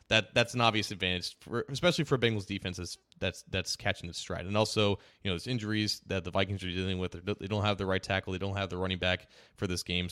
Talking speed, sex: 260 wpm, male